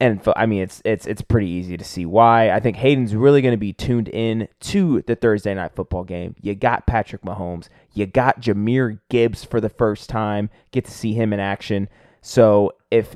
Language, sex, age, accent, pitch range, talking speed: English, male, 20-39, American, 100-115 Hz, 210 wpm